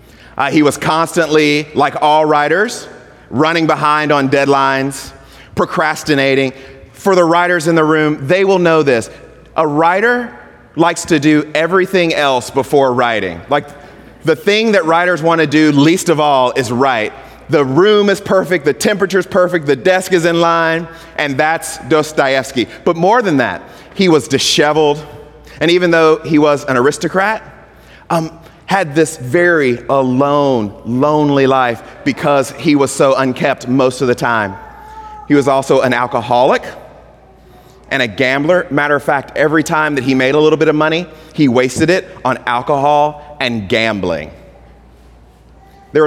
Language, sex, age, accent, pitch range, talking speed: English, male, 30-49, American, 135-165 Hz, 150 wpm